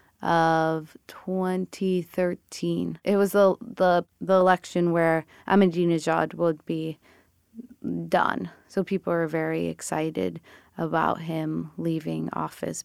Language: English